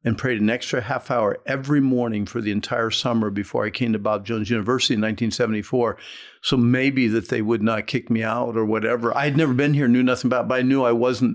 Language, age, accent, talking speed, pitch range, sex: English, 50-69, American, 245 wpm, 110-135 Hz, male